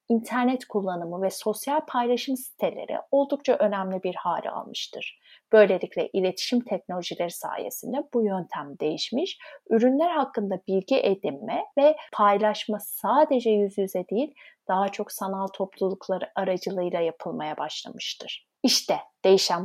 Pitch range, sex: 190-275 Hz, female